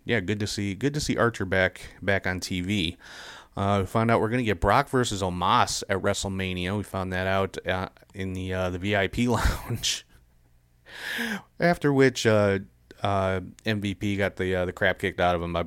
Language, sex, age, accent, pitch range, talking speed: English, male, 30-49, American, 95-115 Hz, 195 wpm